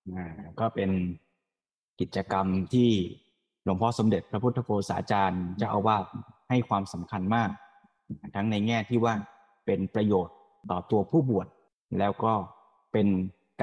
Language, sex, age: Thai, male, 20-39